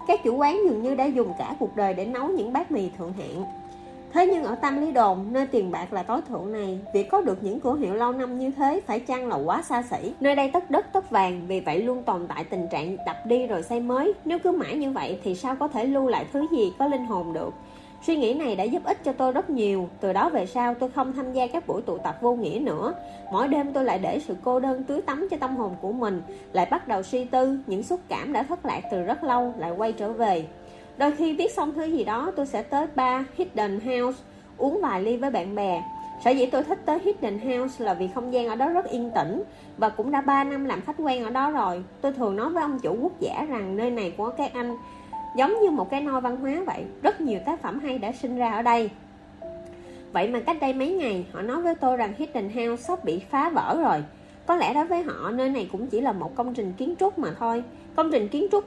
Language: Vietnamese